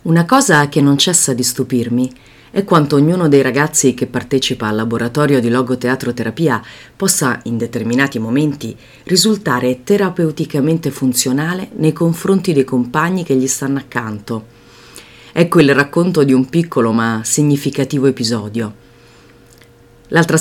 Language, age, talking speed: Italian, 40-59, 130 wpm